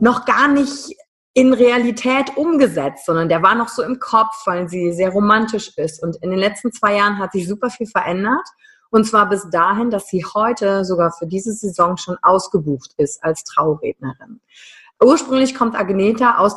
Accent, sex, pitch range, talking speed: German, female, 175-230 Hz, 180 wpm